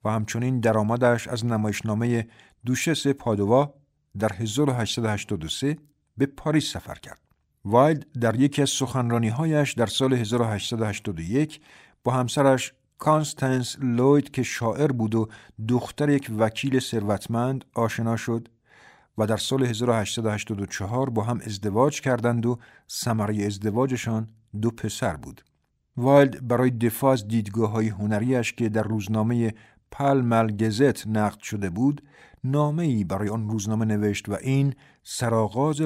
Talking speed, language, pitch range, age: 120 wpm, Persian, 105-130 Hz, 50-69